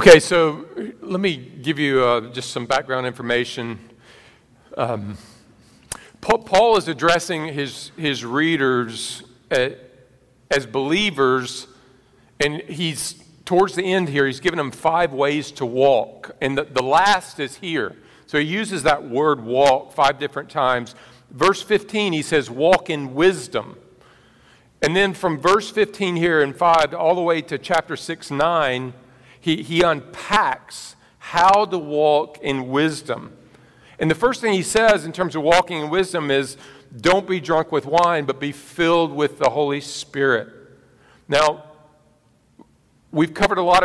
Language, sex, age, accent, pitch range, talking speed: English, male, 50-69, American, 140-185 Hz, 150 wpm